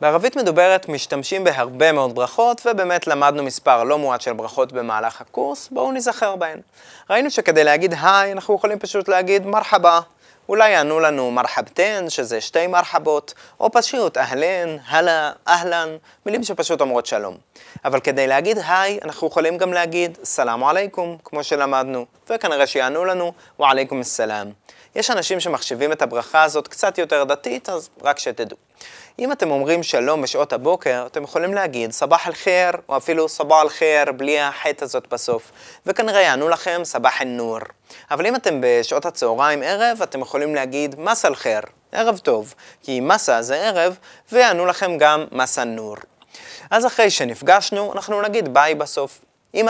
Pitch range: 145-195 Hz